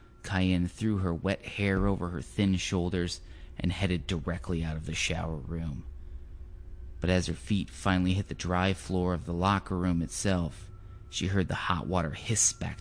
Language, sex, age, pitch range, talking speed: English, male, 30-49, 85-100 Hz, 180 wpm